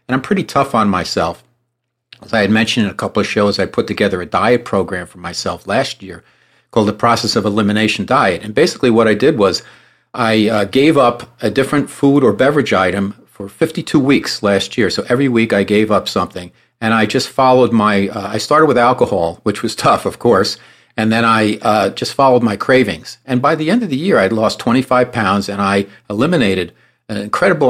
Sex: male